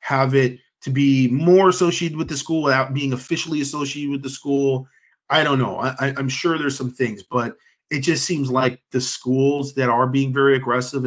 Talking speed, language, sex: 205 wpm, English, male